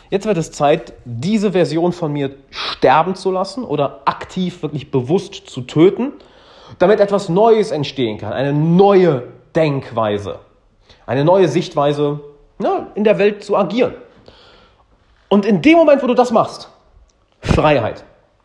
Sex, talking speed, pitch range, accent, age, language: male, 135 wpm, 135-220 Hz, German, 40-59, German